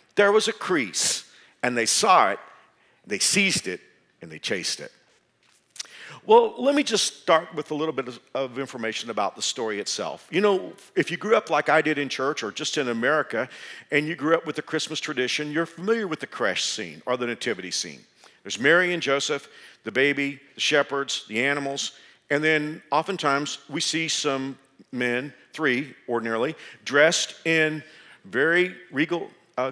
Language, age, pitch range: English, 50-69, 135-165 Hz